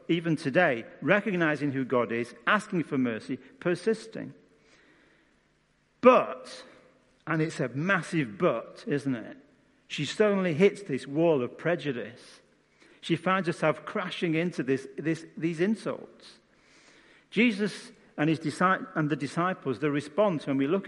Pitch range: 140-200 Hz